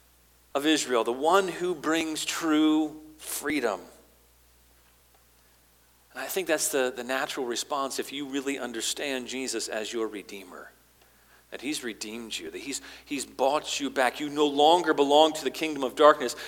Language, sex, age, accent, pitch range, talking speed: English, male, 40-59, American, 95-150 Hz, 155 wpm